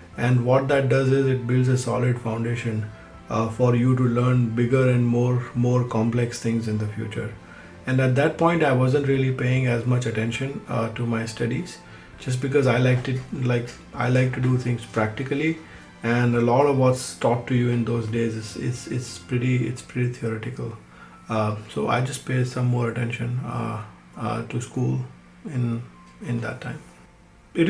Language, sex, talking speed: Hindi, male, 185 wpm